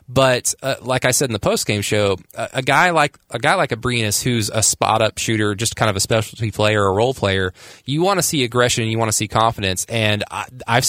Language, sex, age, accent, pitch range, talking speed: English, male, 20-39, American, 105-120 Hz, 255 wpm